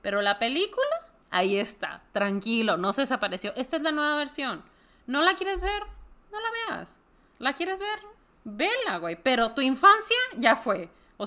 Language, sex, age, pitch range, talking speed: Spanish, female, 20-39, 200-310 Hz, 170 wpm